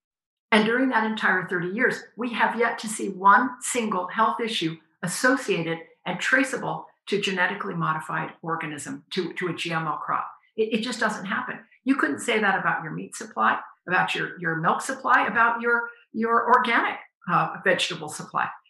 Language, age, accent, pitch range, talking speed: English, 50-69, American, 185-245 Hz, 165 wpm